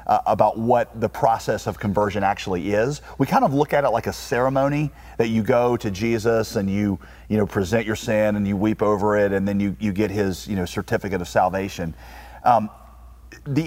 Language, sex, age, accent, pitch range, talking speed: English, male, 40-59, American, 100-120 Hz, 210 wpm